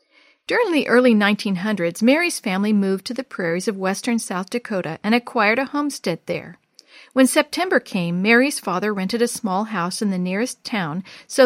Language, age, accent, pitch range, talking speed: English, 50-69, American, 190-255 Hz, 175 wpm